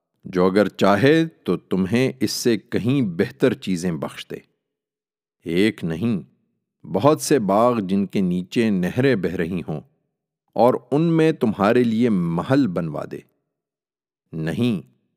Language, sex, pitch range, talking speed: Urdu, male, 90-125 Hz, 130 wpm